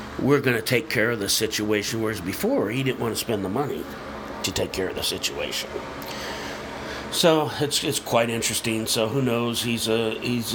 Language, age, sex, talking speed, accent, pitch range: English, 50-69, male, 195 wpm, American, 105-120 Hz